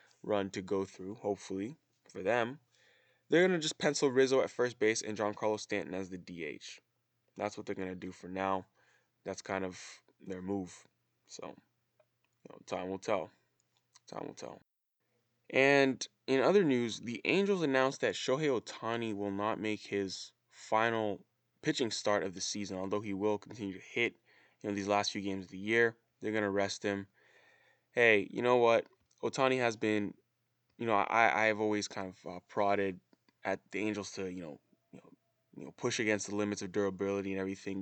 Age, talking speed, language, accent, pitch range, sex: 20-39, 185 wpm, English, American, 95-110 Hz, male